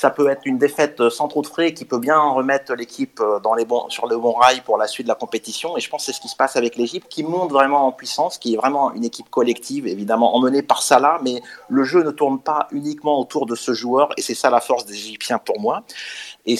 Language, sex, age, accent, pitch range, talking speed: French, male, 30-49, French, 110-140 Hz, 270 wpm